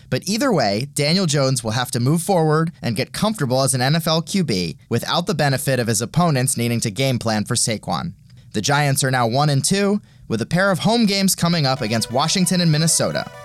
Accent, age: American, 20-39